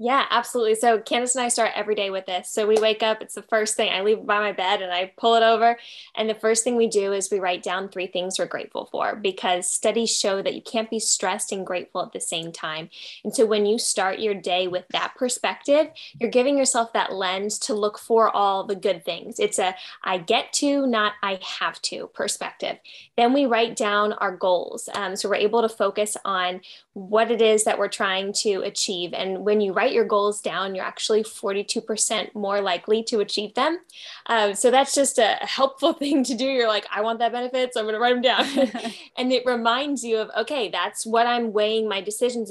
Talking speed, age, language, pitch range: 225 wpm, 10-29, English, 200-235 Hz